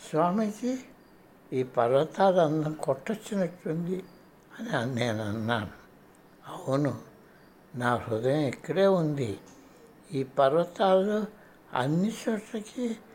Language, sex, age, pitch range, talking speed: Telugu, male, 60-79, 130-175 Hz, 80 wpm